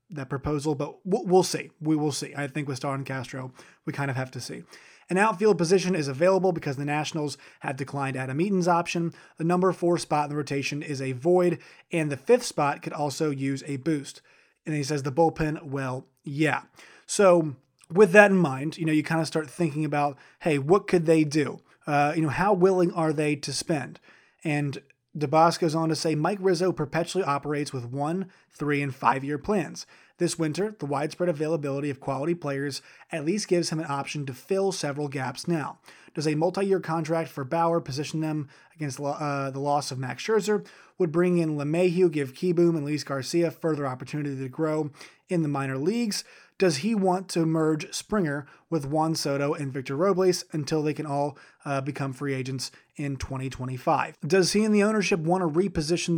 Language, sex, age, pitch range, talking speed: English, male, 30-49, 145-175 Hz, 195 wpm